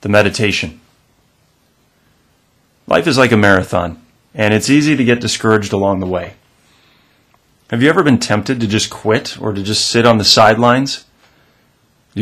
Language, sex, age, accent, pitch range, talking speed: English, male, 30-49, American, 105-125 Hz, 155 wpm